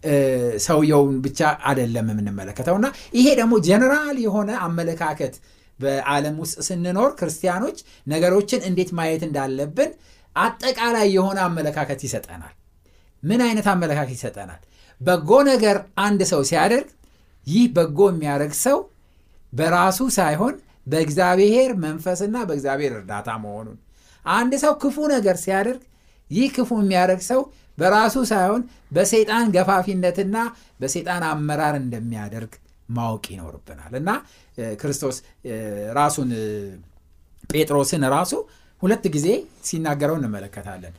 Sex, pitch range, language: male, 120-200 Hz, Amharic